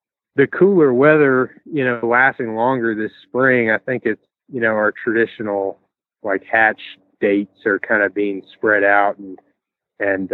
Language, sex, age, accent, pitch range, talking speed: English, male, 30-49, American, 105-130 Hz, 155 wpm